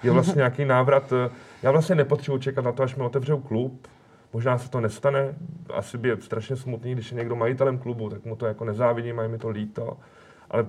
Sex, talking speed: male, 215 wpm